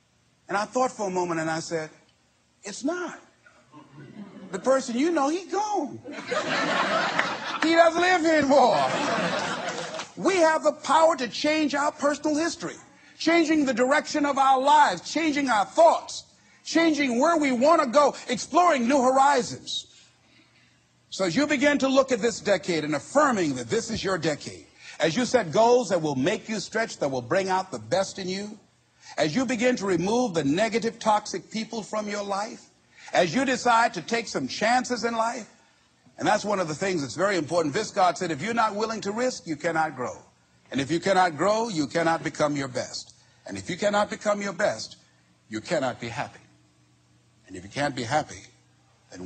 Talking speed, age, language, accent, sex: 185 wpm, 50-69, English, American, male